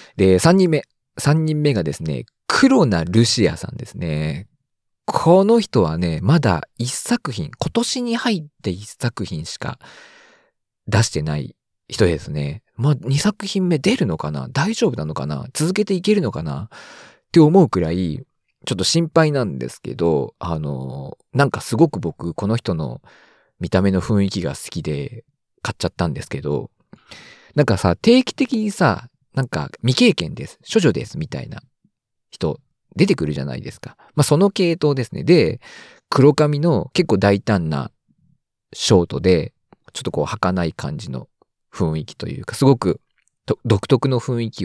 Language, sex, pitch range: Japanese, male, 100-155 Hz